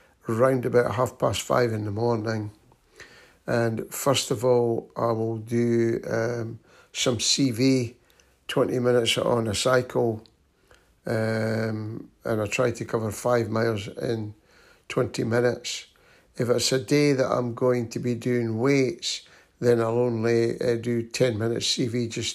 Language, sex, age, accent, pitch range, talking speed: English, male, 60-79, British, 115-125 Hz, 145 wpm